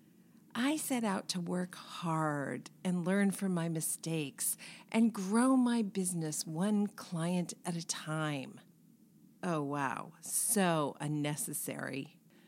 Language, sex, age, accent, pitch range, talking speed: English, female, 40-59, American, 160-215 Hz, 115 wpm